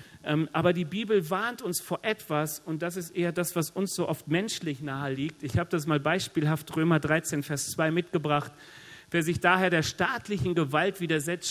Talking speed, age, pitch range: 190 wpm, 40-59, 140-175 Hz